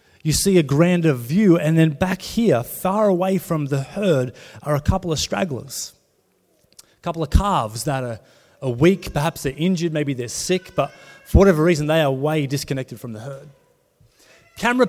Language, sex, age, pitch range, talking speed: English, male, 30-49, 135-180 Hz, 175 wpm